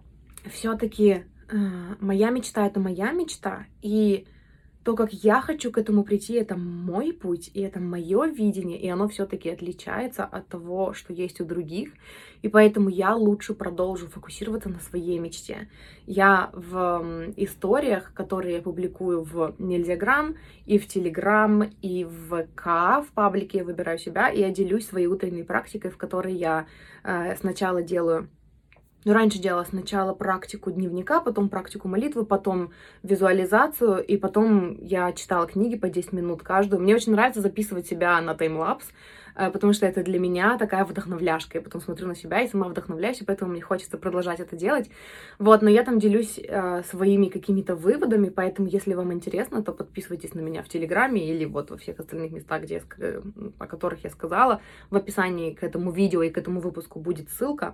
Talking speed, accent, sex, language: 170 wpm, native, female, Russian